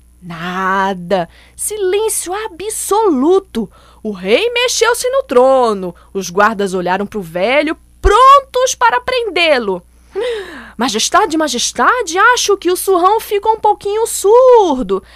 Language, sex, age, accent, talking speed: Portuguese, female, 20-39, Brazilian, 105 wpm